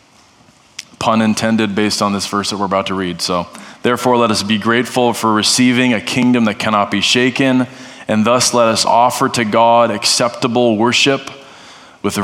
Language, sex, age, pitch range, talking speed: English, male, 20-39, 105-125 Hz, 170 wpm